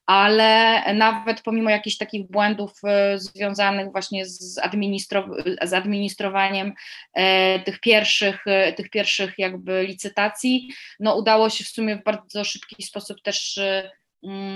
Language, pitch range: Polish, 185-215 Hz